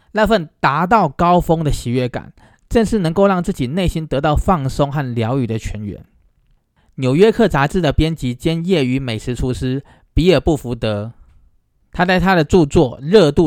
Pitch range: 115-175 Hz